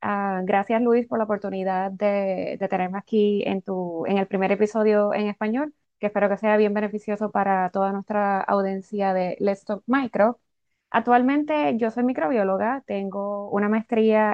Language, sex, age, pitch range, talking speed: English, female, 20-39, 195-225 Hz, 165 wpm